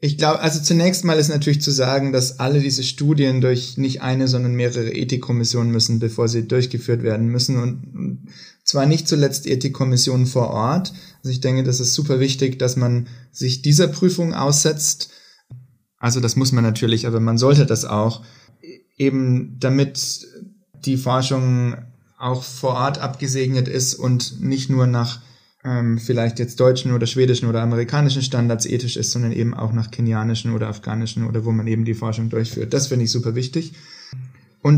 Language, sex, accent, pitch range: German, male, German, 120-140 Hz